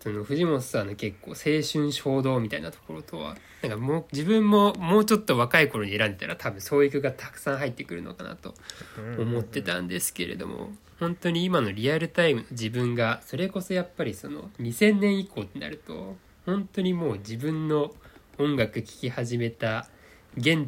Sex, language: male, Japanese